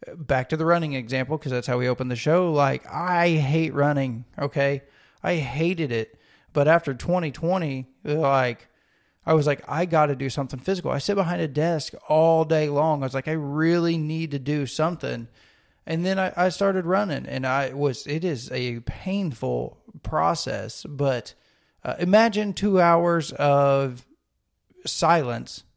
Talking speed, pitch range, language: 165 wpm, 130-160 Hz, English